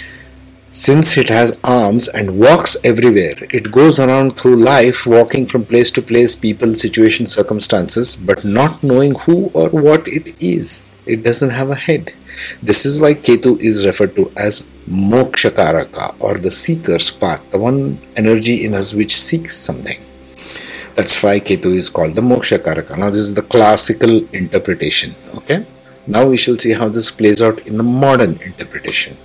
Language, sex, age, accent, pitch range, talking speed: English, male, 50-69, Indian, 90-125 Hz, 165 wpm